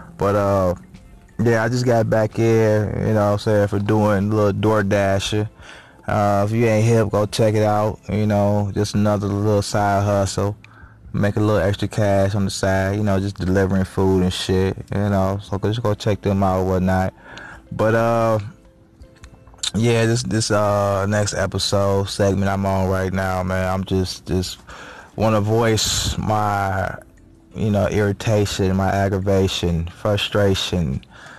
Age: 20-39